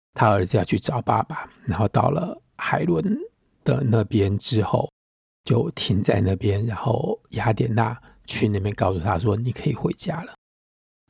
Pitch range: 100-125 Hz